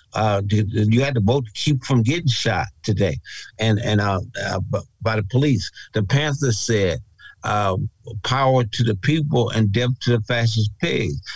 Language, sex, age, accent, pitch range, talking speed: English, male, 60-79, American, 105-125 Hz, 170 wpm